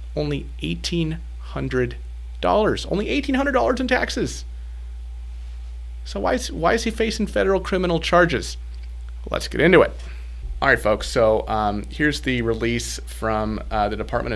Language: English